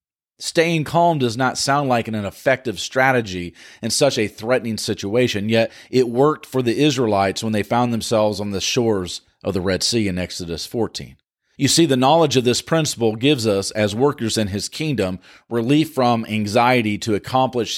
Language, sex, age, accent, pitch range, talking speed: English, male, 40-59, American, 100-130 Hz, 180 wpm